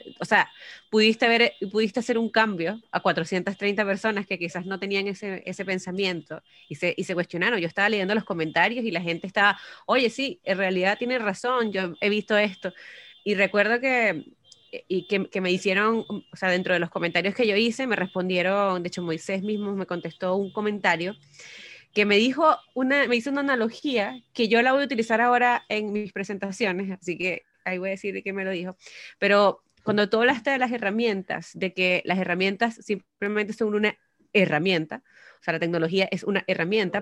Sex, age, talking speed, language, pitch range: female, 20-39, 195 wpm, Spanish, 185-225 Hz